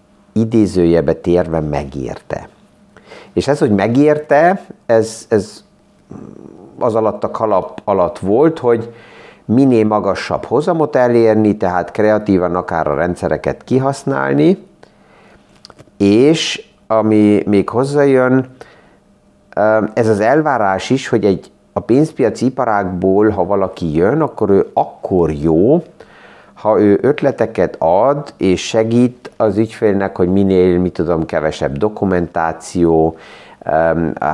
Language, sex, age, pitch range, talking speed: Hungarian, male, 50-69, 95-115 Hz, 105 wpm